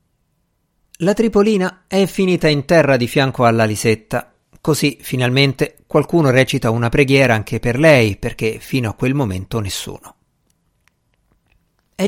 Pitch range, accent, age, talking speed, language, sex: 110-150 Hz, native, 50-69, 130 wpm, Italian, male